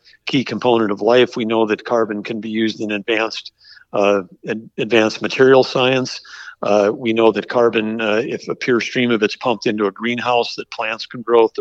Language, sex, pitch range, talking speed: English, male, 110-120 Hz, 190 wpm